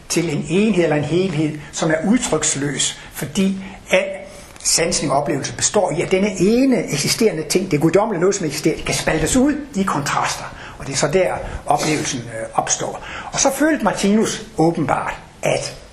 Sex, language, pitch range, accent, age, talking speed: male, Danish, 140-185 Hz, native, 60-79, 170 wpm